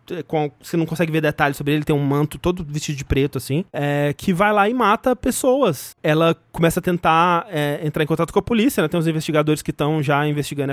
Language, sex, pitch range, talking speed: Portuguese, male, 140-180 Hz, 220 wpm